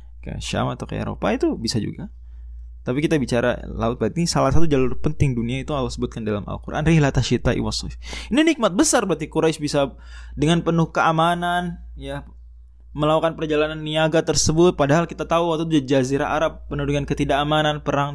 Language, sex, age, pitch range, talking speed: Indonesian, male, 20-39, 110-180 Hz, 160 wpm